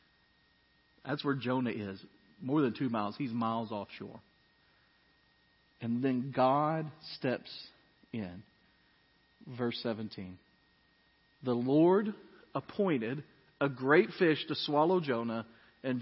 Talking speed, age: 105 wpm, 40-59